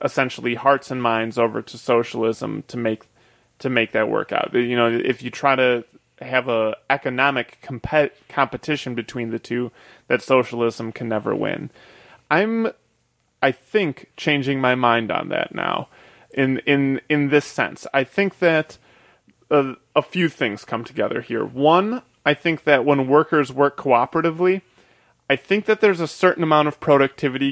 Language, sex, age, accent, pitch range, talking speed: English, male, 30-49, American, 125-155 Hz, 160 wpm